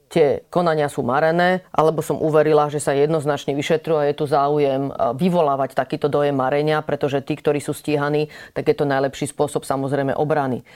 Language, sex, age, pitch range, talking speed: Slovak, female, 30-49, 140-165 Hz, 160 wpm